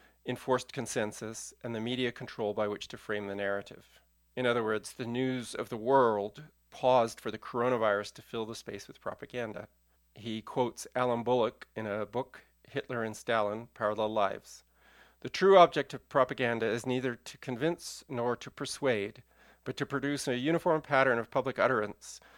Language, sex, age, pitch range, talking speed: English, male, 40-59, 110-130 Hz, 170 wpm